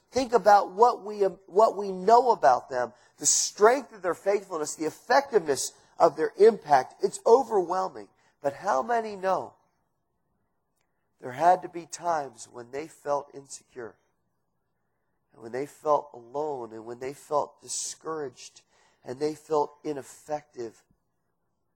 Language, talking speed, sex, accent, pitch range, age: English, 130 wpm, male, American, 145-200 Hz, 40-59